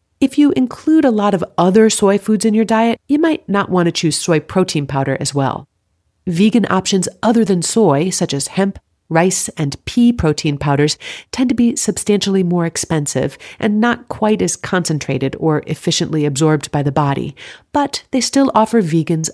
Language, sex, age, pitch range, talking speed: English, female, 40-59, 150-220 Hz, 180 wpm